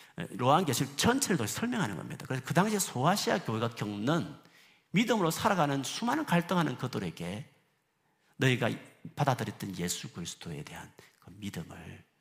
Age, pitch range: 50-69, 115-165 Hz